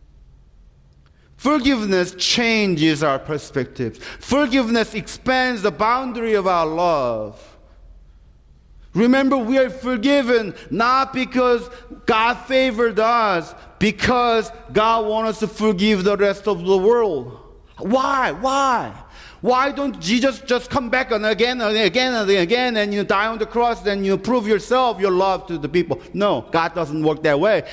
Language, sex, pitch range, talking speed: English, male, 165-250 Hz, 145 wpm